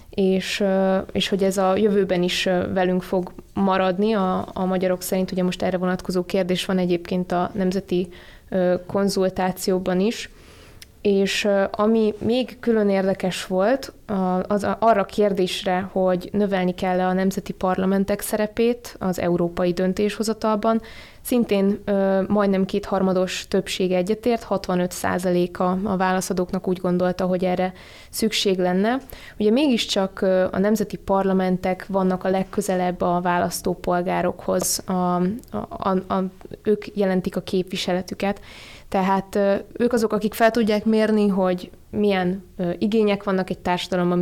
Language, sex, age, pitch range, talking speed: Hungarian, female, 20-39, 185-205 Hz, 120 wpm